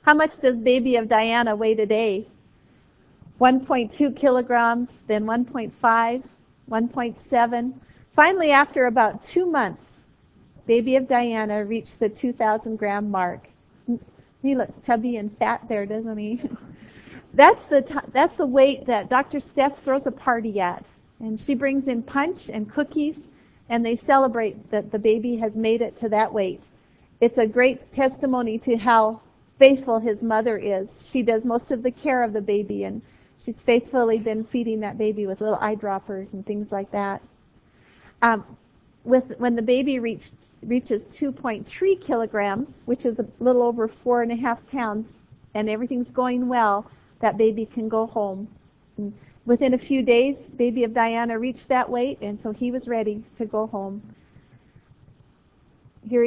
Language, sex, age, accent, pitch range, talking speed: English, female, 40-59, American, 220-255 Hz, 155 wpm